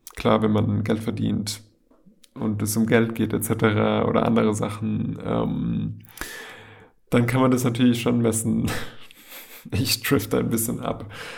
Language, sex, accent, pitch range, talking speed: German, male, German, 105-120 Hz, 140 wpm